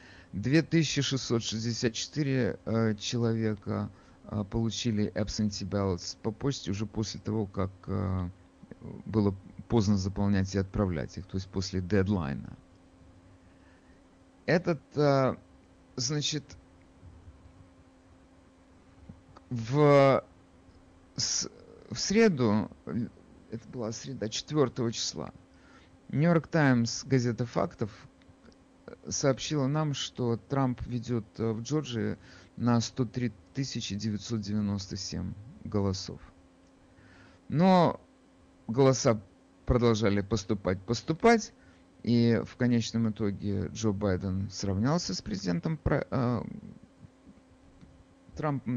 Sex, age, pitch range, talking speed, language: male, 50-69, 90-125 Hz, 80 wpm, Russian